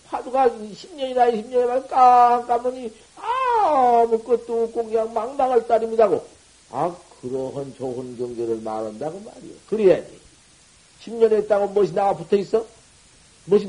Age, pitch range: 50-69, 170-230 Hz